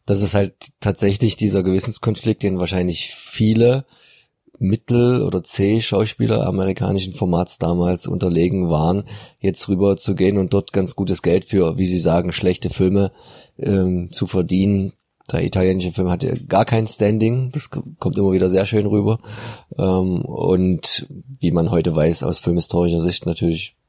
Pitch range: 85-105 Hz